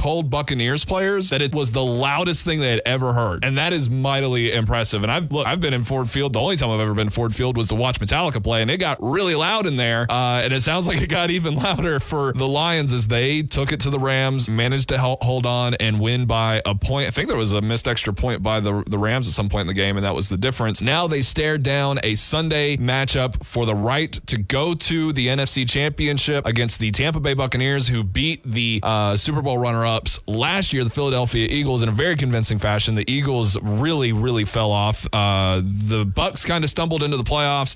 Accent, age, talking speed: American, 20-39, 240 wpm